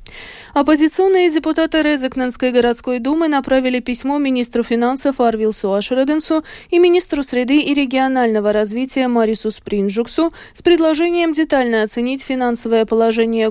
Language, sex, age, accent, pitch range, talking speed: Russian, female, 20-39, native, 225-295 Hz, 110 wpm